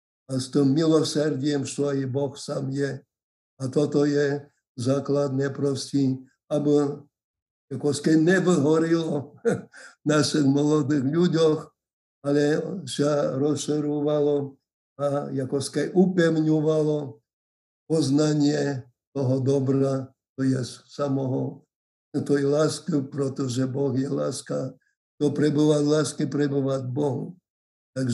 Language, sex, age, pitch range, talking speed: Slovak, male, 60-79, 140-155 Hz, 105 wpm